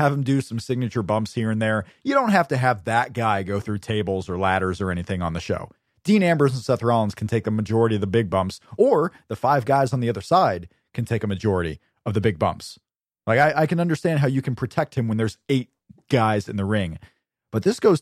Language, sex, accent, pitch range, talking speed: English, male, American, 105-150 Hz, 250 wpm